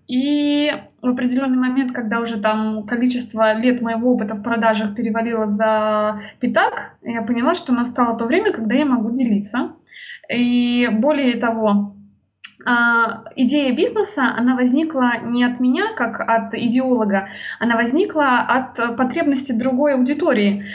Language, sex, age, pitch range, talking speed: Russian, female, 20-39, 230-275 Hz, 130 wpm